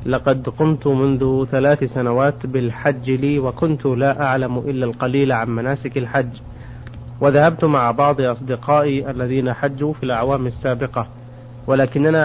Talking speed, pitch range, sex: 120 wpm, 120-140 Hz, male